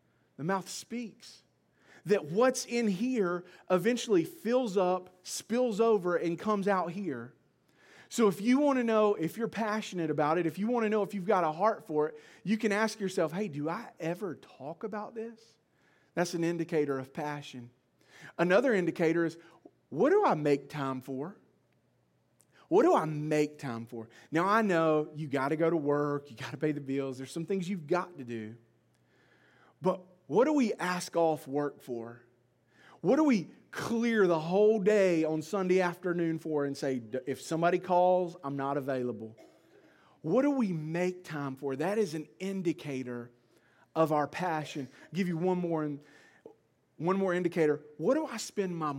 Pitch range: 145-210 Hz